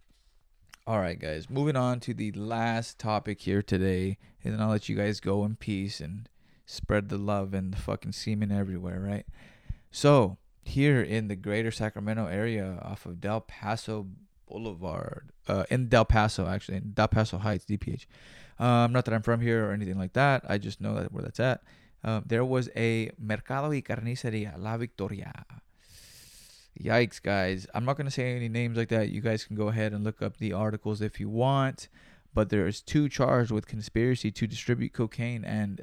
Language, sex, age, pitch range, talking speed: English, male, 20-39, 100-125 Hz, 185 wpm